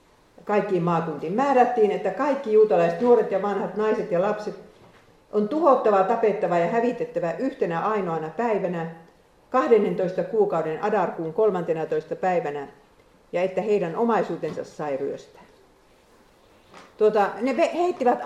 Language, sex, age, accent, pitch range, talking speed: Finnish, female, 50-69, native, 175-235 Hz, 110 wpm